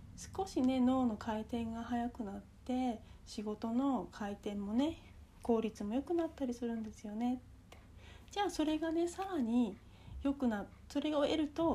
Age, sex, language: 40-59, female, Japanese